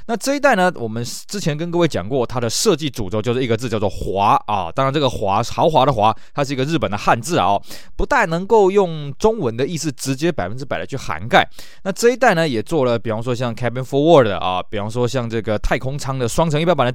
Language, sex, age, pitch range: Chinese, male, 20-39, 115-160 Hz